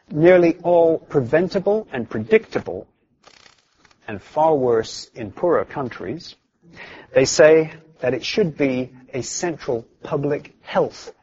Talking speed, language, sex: 110 wpm, English, male